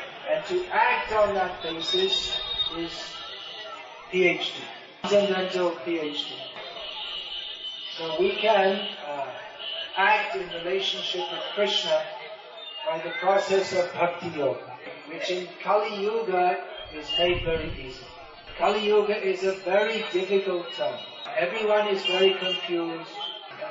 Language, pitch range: English, 175-205 Hz